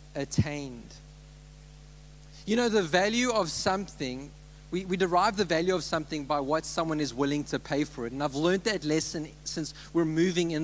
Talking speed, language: 180 wpm, English